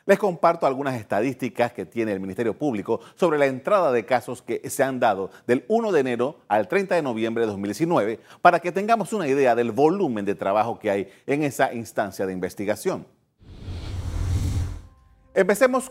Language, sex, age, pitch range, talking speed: Spanish, male, 40-59, 115-160 Hz, 170 wpm